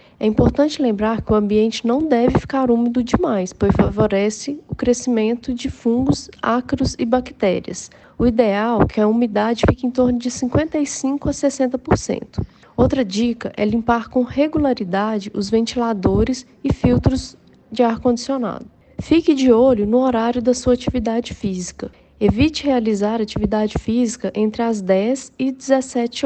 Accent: Brazilian